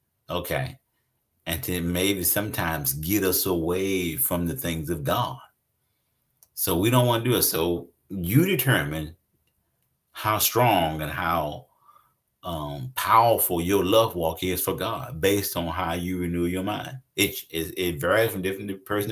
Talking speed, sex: 155 wpm, male